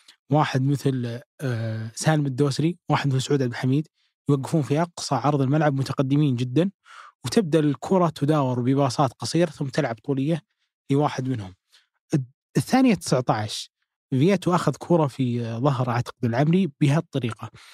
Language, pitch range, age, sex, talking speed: Arabic, 130-160 Hz, 20-39, male, 120 wpm